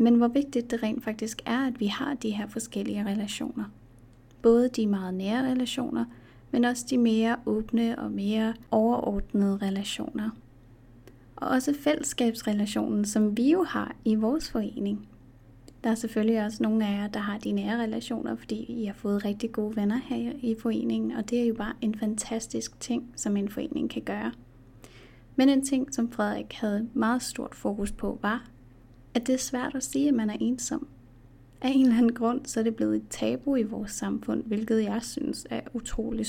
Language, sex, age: Danish, female, 30-49